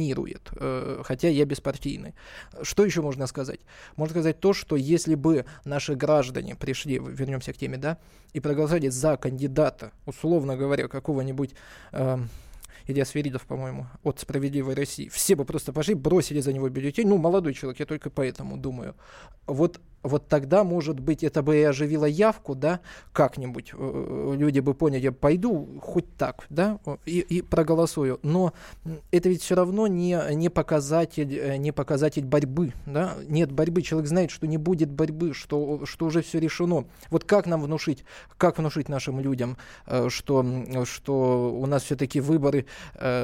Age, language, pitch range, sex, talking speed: 20-39, Russian, 135-160 Hz, male, 150 wpm